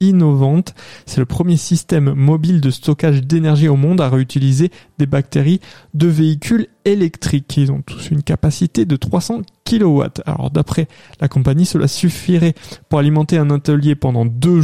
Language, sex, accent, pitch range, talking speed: French, male, French, 140-175 Hz, 155 wpm